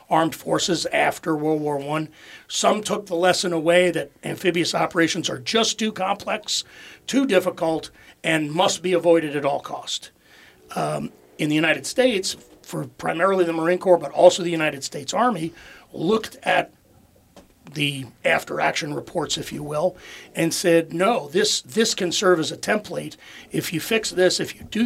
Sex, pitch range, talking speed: male, 155-185 Hz, 165 wpm